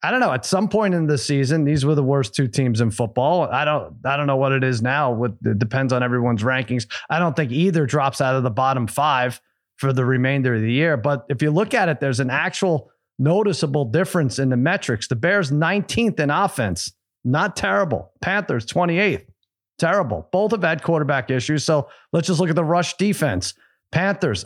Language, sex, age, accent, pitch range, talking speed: English, male, 30-49, American, 130-165 Hz, 210 wpm